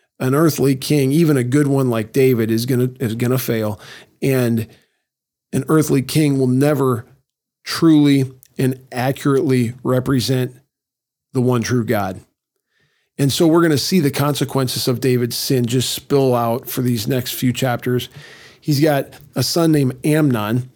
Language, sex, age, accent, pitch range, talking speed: English, male, 40-59, American, 125-145 Hz, 150 wpm